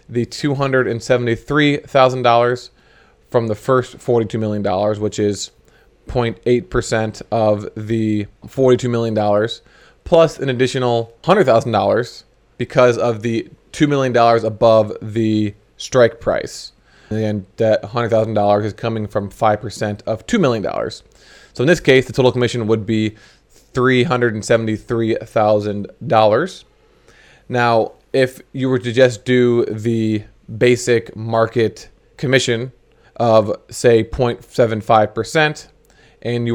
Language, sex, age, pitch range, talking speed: English, male, 20-39, 110-125 Hz, 105 wpm